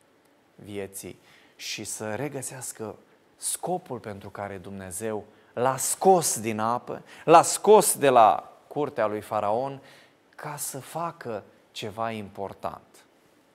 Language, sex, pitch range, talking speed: Romanian, male, 115-195 Hz, 105 wpm